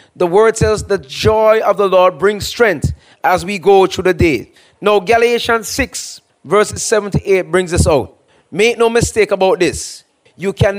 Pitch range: 180-225 Hz